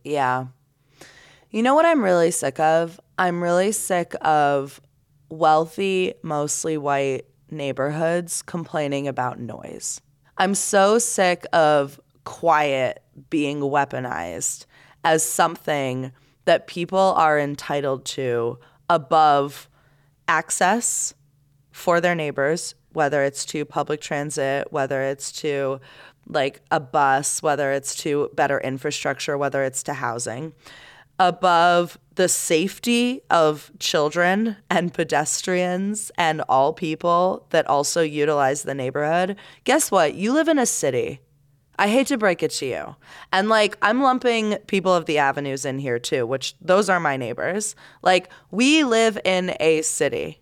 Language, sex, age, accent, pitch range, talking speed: English, female, 20-39, American, 140-185 Hz, 130 wpm